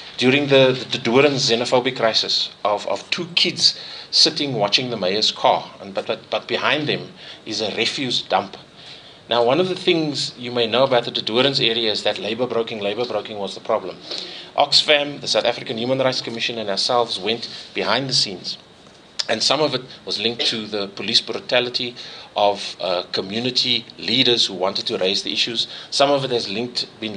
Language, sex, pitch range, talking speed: English, male, 105-135 Hz, 180 wpm